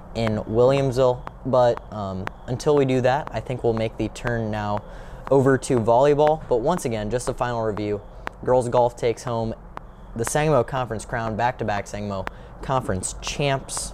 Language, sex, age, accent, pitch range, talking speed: English, male, 20-39, American, 110-130 Hz, 160 wpm